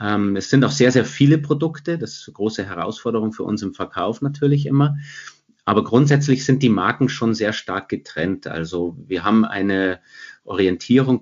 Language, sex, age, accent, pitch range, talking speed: German, male, 30-49, German, 95-125 Hz, 170 wpm